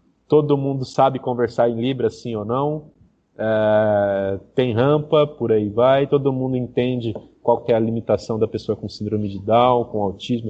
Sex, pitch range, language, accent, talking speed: male, 115-155 Hz, Portuguese, Brazilian, 170 wpm